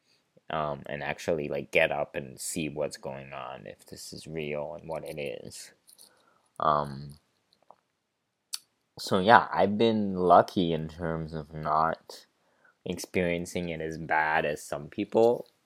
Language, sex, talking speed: English, male, 140 wpm